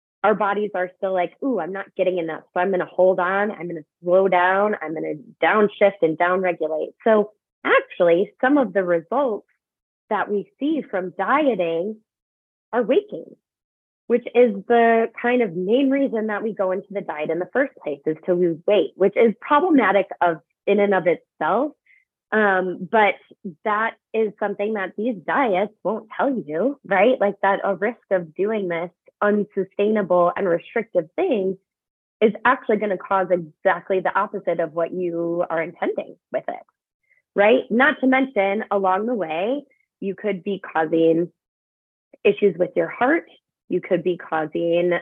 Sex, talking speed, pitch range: female, 170 wpm, 175-215 Hz